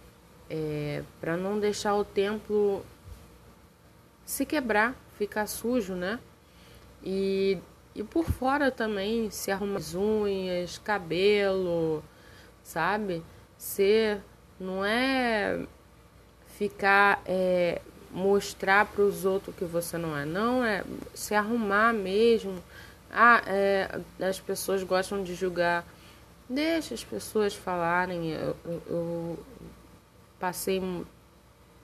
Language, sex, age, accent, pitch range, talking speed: Portuguese, female, 20-39, Brazilian, 160-200 Hz, 100 wpm